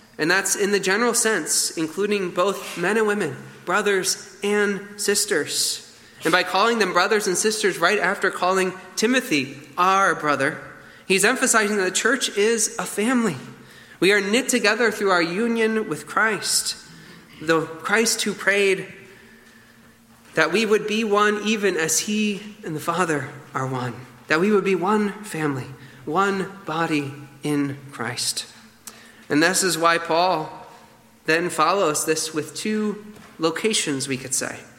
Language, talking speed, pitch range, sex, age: English, 145 wpm, 150-210 Hz, male, 30-49